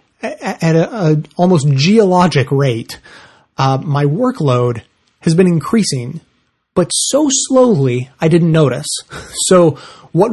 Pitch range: 130-160 Hz